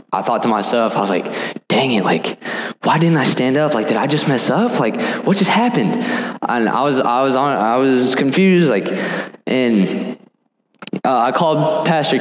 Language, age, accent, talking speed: English, 20-39, American, 195 wpm